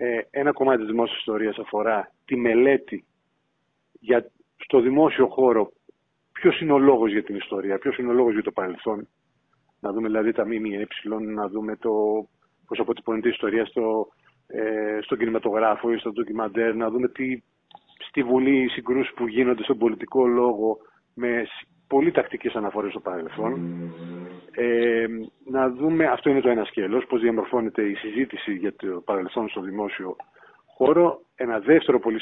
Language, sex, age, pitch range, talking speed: Greek, male, 30-49, 110-135 Hz, 160 wpm